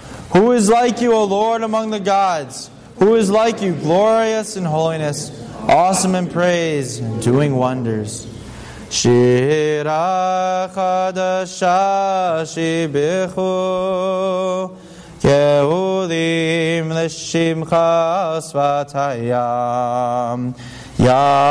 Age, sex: 20-39, male